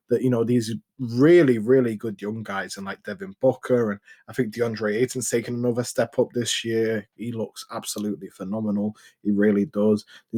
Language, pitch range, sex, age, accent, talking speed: English, 110-130 Hz, male, 20-39, British, 185 wpm